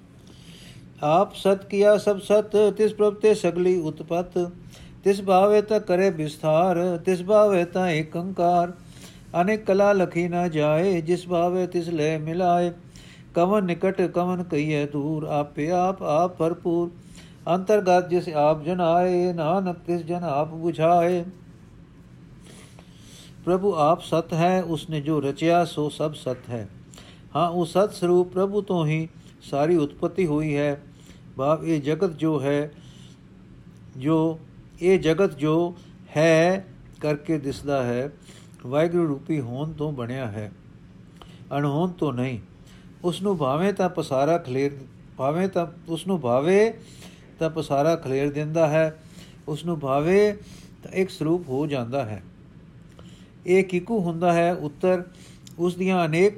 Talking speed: 135 wpm